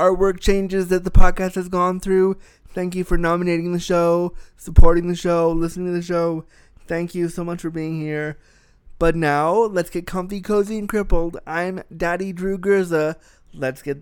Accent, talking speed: American, 180 wpm